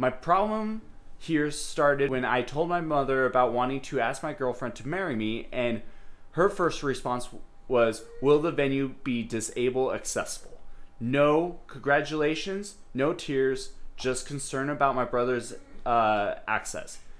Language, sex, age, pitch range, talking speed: English, male, 20-39, 120-145 Hz, 140 wpm